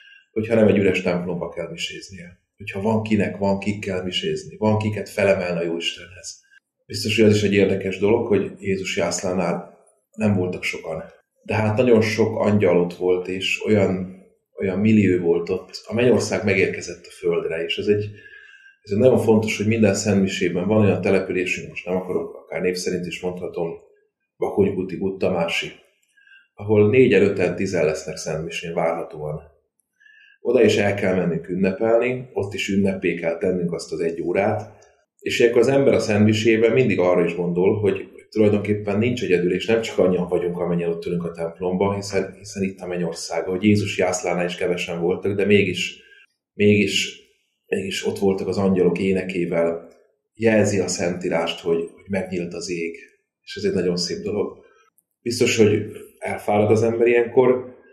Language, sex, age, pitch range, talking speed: Hungarian, male, 30-49, 90-115 Hz, 165 wpm